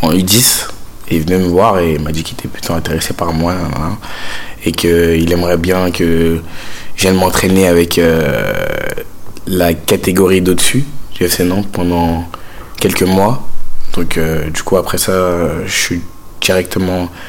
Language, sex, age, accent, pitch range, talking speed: French, male, 20-39, French, 85-95 Hz, 155 wpm